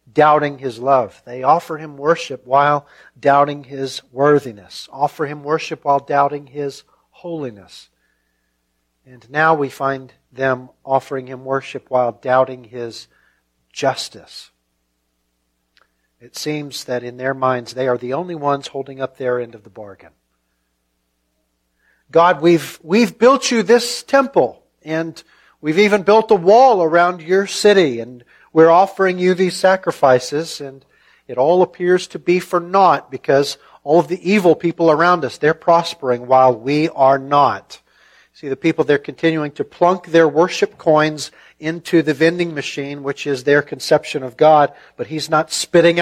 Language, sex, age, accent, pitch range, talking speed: English, male, 50-69, American, 120-160 Hz, 150 wpm